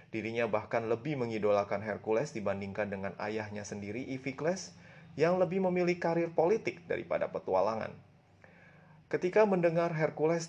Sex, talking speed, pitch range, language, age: male, 115 wpm, 105-155 Hz, Indonesian, 30-49